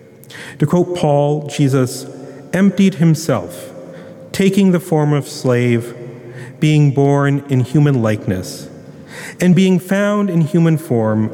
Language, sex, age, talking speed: English, male, 40-59, 115 wpm